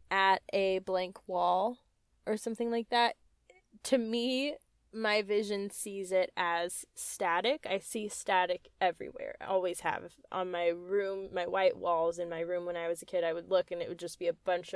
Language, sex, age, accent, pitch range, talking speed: English, female, 10-29, American, 175-220 Hz, 190 wpm